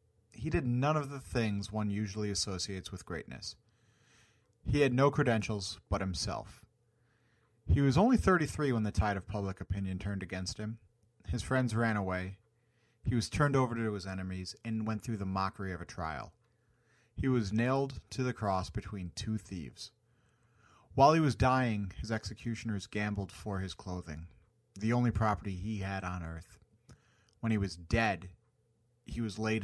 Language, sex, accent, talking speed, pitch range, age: English, male, American, 165 wpm, 100-120 Hz, 30-49